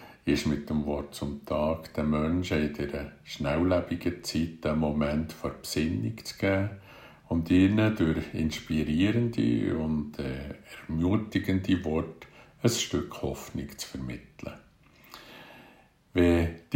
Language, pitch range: German, 75-90 Hz